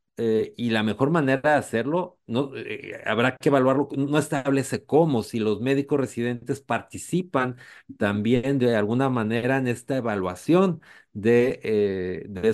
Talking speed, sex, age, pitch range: 135 wpm, male, 40-59, 110-135 Hz